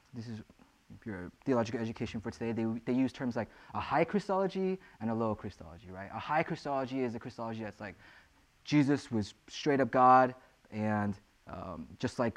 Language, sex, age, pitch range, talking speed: English, male, 20-39, 110-140 Hz, 180 wpm